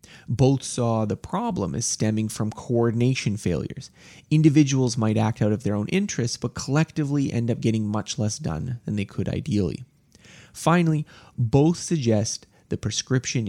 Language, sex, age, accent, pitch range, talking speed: English, male, 30-49, American, 105-135 Hz, 150 wpm